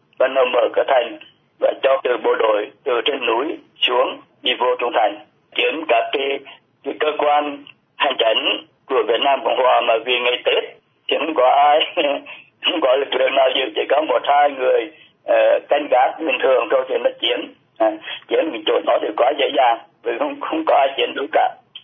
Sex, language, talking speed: male, Vietnamese, 205 wpm